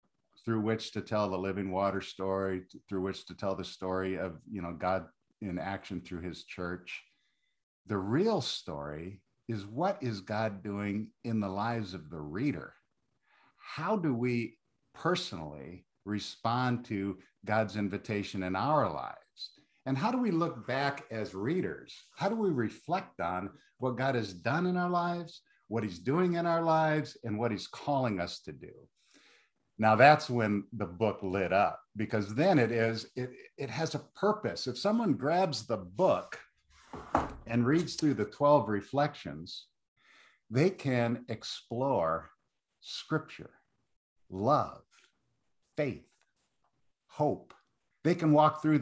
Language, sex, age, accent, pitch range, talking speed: English, male, 50-69, American, 100-140 Hz, 145 wpm